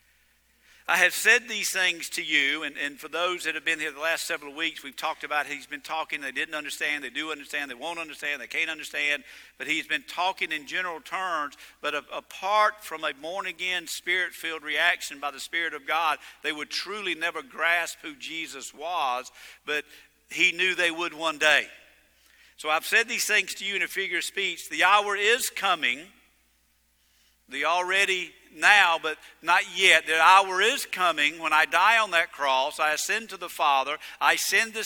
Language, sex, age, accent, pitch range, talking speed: English, male, 50-69, American, 150-185 Hz, 190 wpm